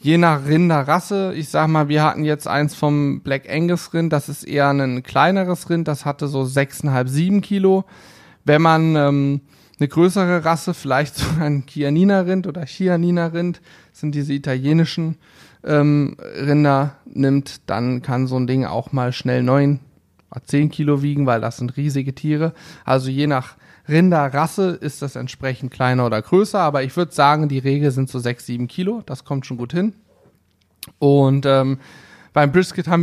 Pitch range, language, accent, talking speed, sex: 135-165 Hz, German, German, 165 wpm, male